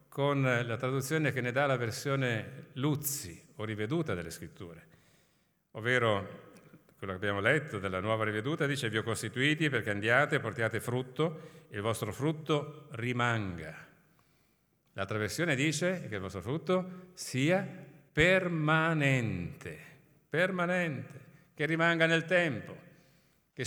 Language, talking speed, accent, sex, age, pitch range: Italian, 125 wpm, native, male, 50-69, 130-160 Hz